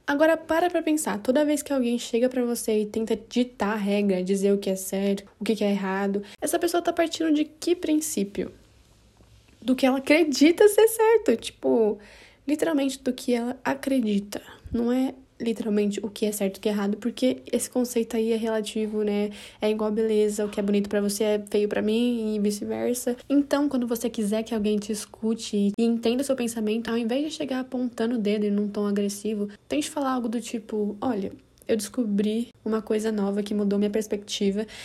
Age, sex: 10-29, female